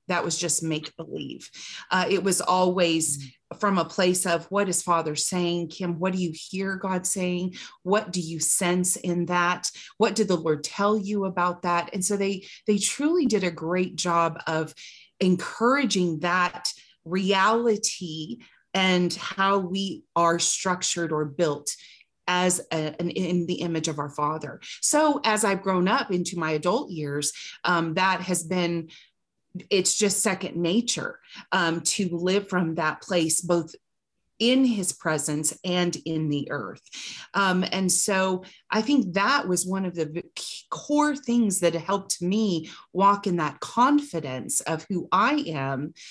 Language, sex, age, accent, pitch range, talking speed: English, female, 30-49, American, 165-195 Hz, 155 wpm